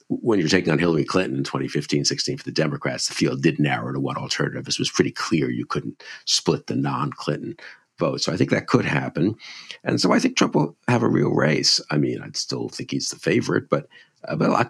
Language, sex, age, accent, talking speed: English, male, 50-69, American, 230 wpm